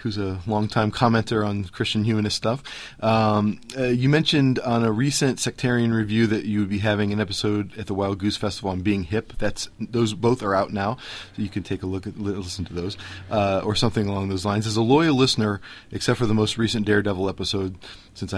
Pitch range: 95-115 Hz